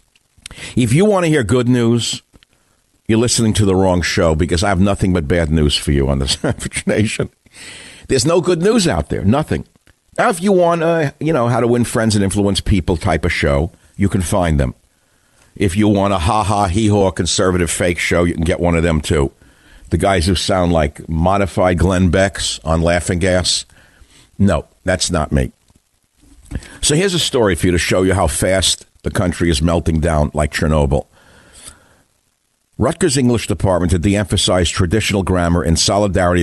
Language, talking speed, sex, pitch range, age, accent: English, 185 wpm, male, 85-105 Hz, 60-79, American